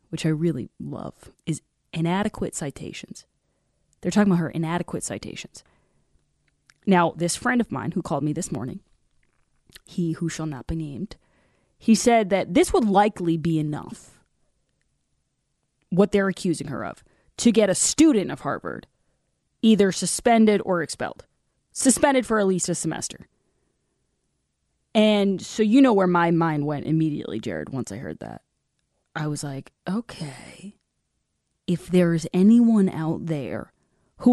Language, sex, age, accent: English, female, 20-39, American